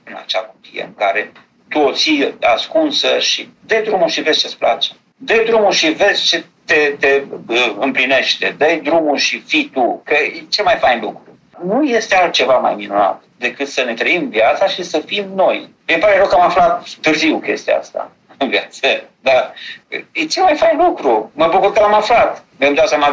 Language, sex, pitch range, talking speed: Romanian, male, 140-210 Hz, 190 wpm